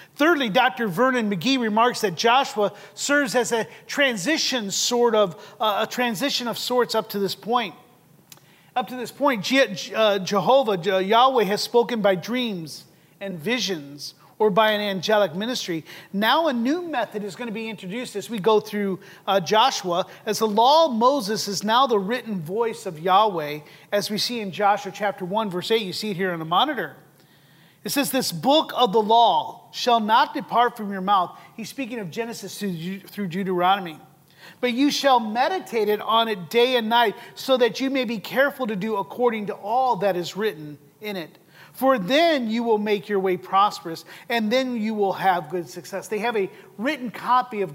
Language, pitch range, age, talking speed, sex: English, 190-245 Hz, 30-49, 190 wpm, male